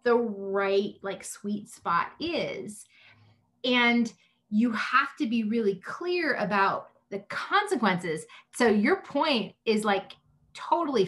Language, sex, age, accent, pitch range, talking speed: English, female, 30-49, American, 190-235 Hz, 120 wpm